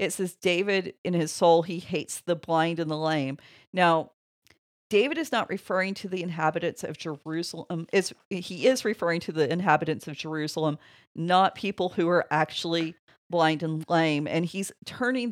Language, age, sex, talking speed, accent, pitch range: English, 40-59, female, 170 wpm, American, 155-190 Hz